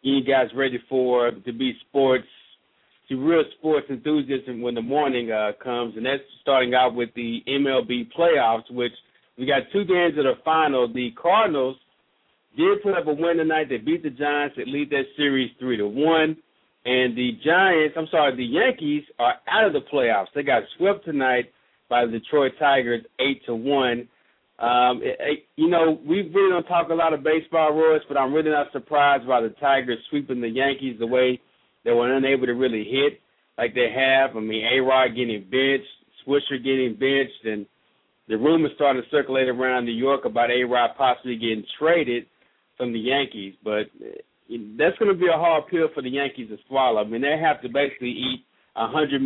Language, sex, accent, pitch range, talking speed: English, male, American, 120-150 Hz, 190 wpm